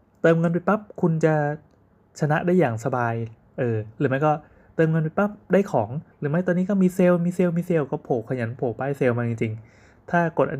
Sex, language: male, Thai